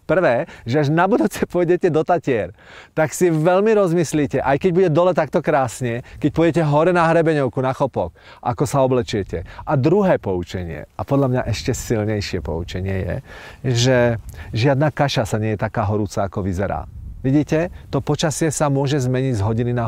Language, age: Czech, 40-59